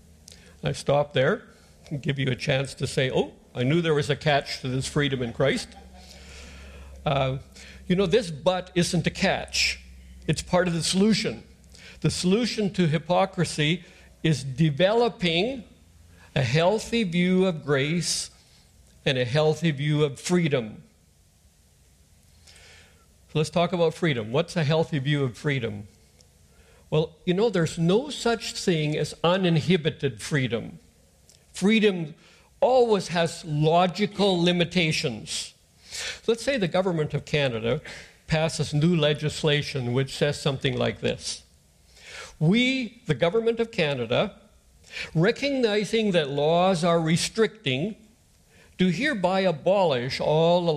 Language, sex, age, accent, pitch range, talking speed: English, male, 60-79, American, 125-180 Hz, 125 wpm